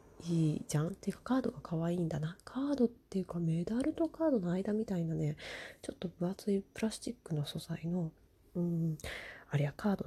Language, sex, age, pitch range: Japanese, female, 20-39, 160-195 Hz